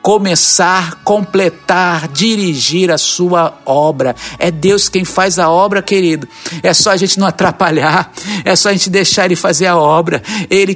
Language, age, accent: Portuguese, 50-69, Brazilian